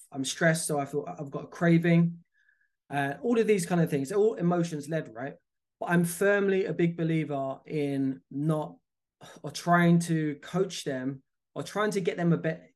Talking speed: 190 wpm